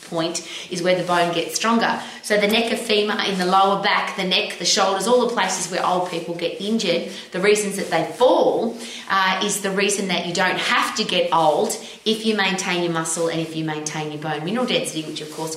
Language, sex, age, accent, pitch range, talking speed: English, female, 30-49, Australian, 175-220 Hz, 230 wpm